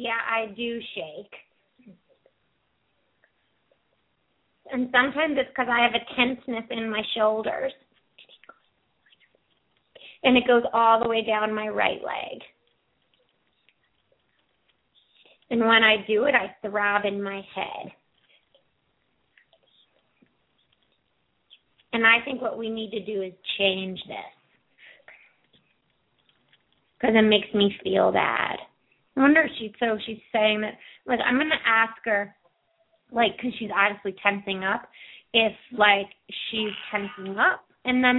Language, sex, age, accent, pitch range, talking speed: English, female, 30-49, American, 200-235 Hz, 120 wpm